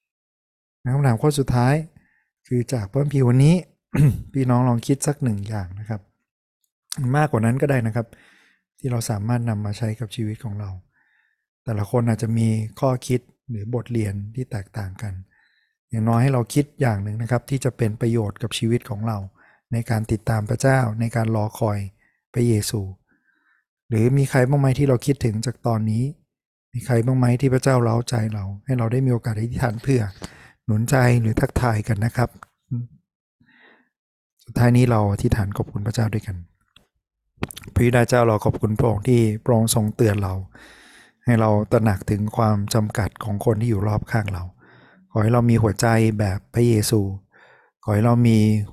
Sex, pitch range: male, 105-125 Hz